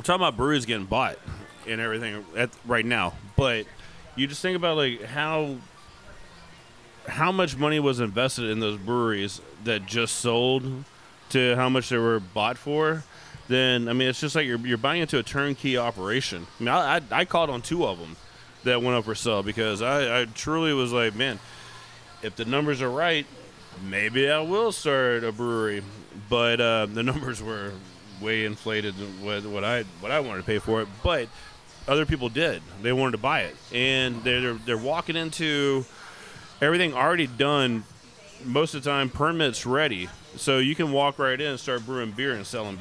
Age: 30-49